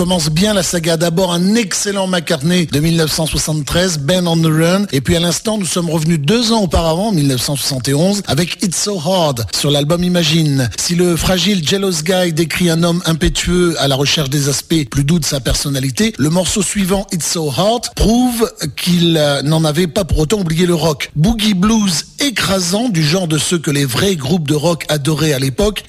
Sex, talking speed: male, 190 wpm